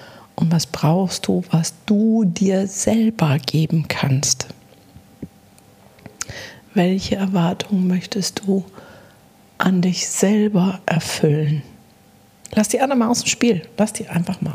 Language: German